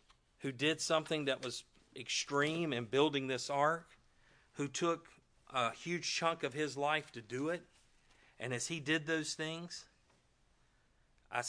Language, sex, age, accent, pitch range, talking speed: English, male, 40-59, American, 120-150 Hz, 145 wpm